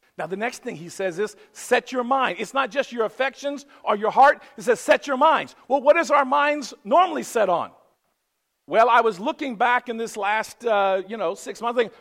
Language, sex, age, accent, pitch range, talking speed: English, male, 50-69, American, 205-265 Hz, 225 wpm